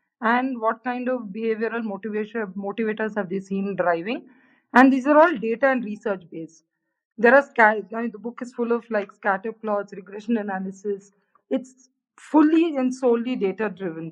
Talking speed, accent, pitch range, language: 170 wpm, native, 200-250 Hz, Hindi